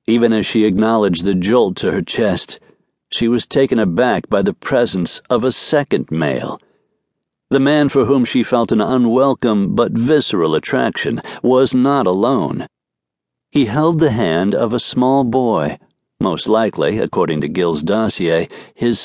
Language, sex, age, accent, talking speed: English, male, 60-79, American, 155 wpm